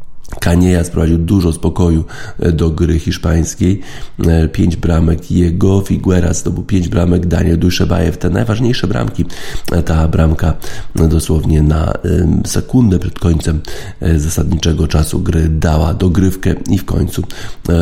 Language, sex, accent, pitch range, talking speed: Polish, male, native, 80-90 Hz, 120 wpm